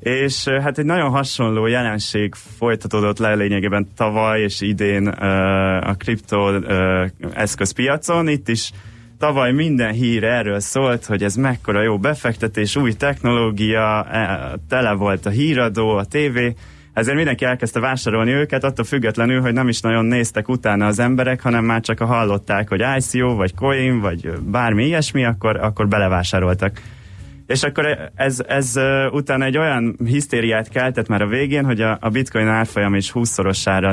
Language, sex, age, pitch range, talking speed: Hungarian, male, 20-39, 100-125 Hz, 150 wpm